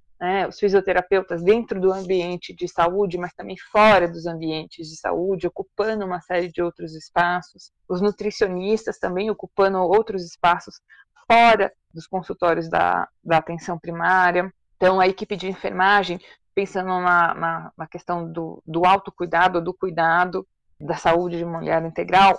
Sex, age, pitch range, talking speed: female, 20-39, 175-210 Hz, 135 wpm